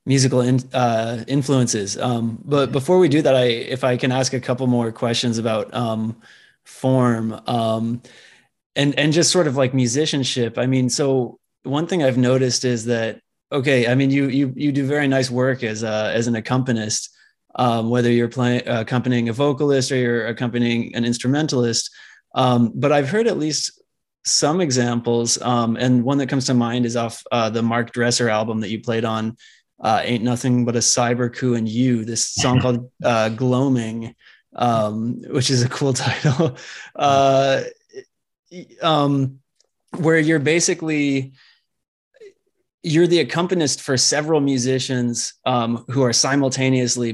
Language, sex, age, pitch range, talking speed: English, male, 20-39, 120-140 Hz, 165 wpm